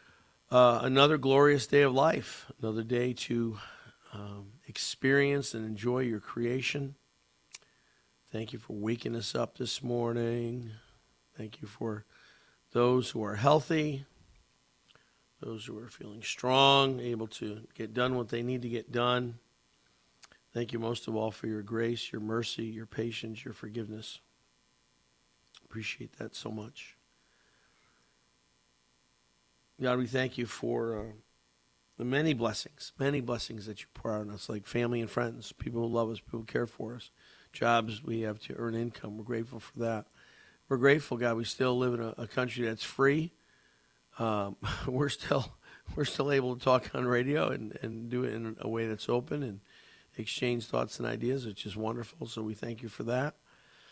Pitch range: 105-125 Hz